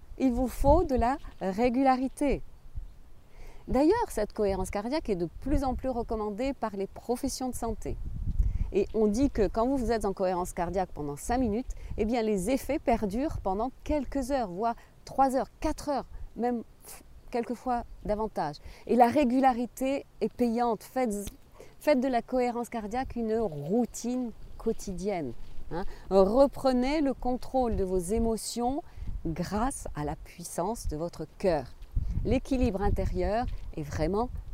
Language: French